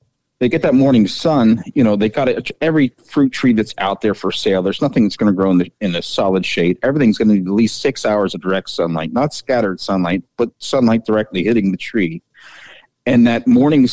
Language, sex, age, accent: English, male, 40-59, American